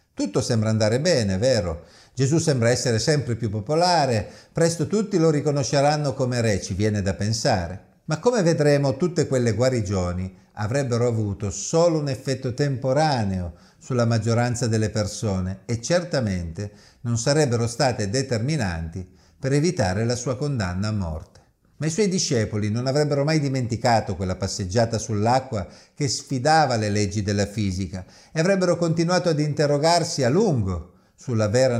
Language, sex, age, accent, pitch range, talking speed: Italian, male, 50-69, native, 105-150 Hz, 145 wpm